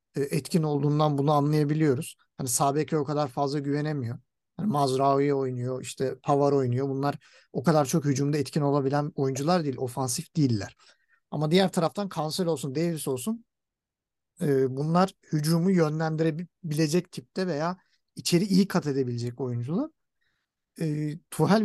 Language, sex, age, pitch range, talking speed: Turkish, male, 50-69, 140-195 Hz, 125 wpm